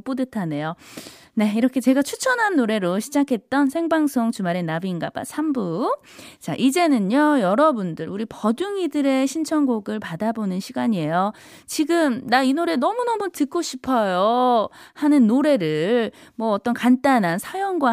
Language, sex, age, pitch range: Korean, female, 20-39, 200-310 Hz